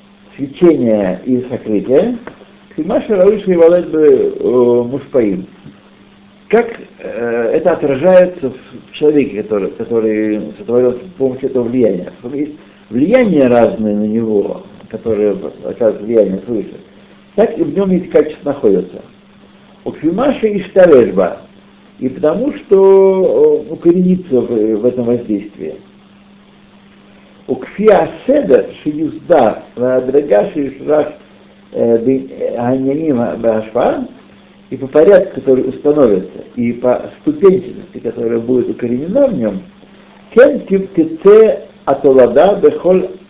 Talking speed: 110 wpm